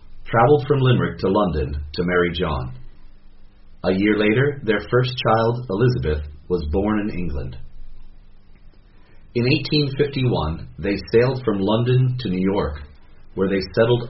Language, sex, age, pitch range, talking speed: English, male, 40-59, 75-110 Hz, 130 wpm